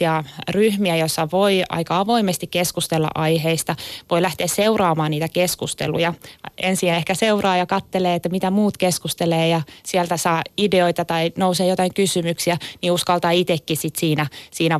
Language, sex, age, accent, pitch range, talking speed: Finnish, female, 20-39, native, 160-185 Hz, 145 wpm